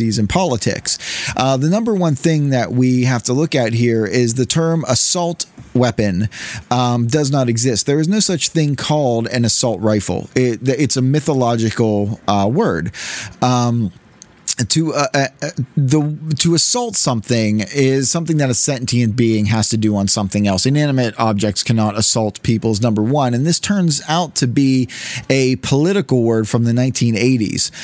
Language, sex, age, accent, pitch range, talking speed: English, male, 30-49, American, 115-145 Hz, 170 wpm